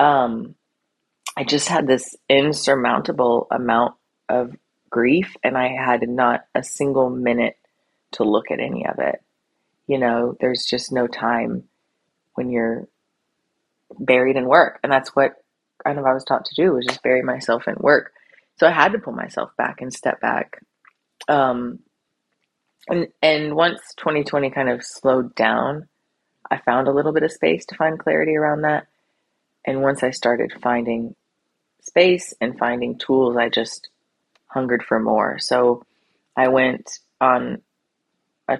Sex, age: female, 30-49